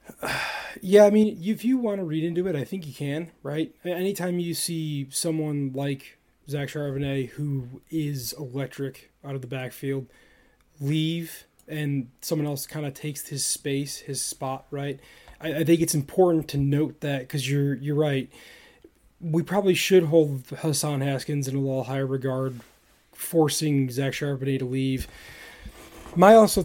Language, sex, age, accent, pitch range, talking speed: English, male, 20-39, American, 135-160 Hz, 160 wpm